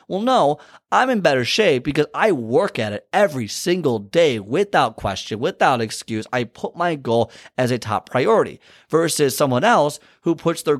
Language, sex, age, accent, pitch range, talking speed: English, male, 30-49, American, 115-150 Hz, 180 wpm